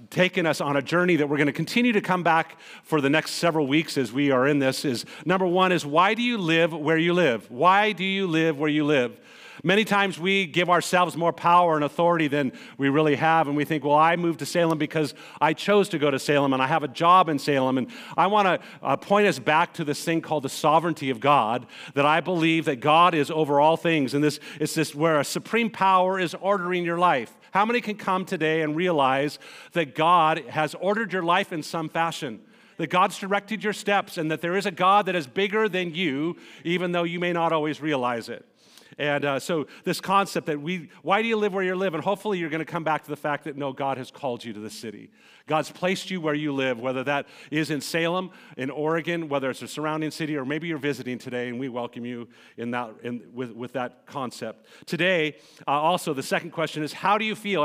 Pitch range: 145-180 Hz